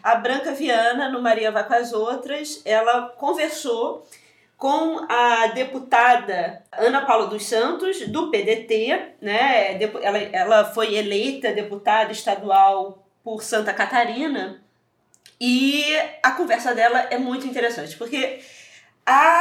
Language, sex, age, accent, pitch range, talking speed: Portuguese, female, 20-39, Brazilian, 215-300 Hz, 120 wpm